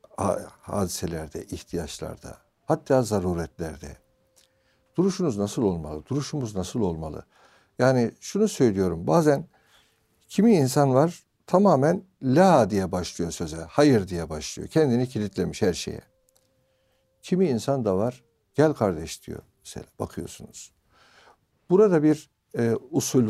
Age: 60-79